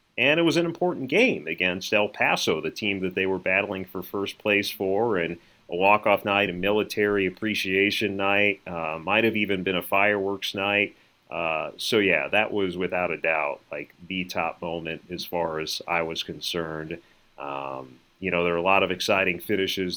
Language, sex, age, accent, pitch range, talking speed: English, male, 30-49, American, 85-100 Hz, 190 wpm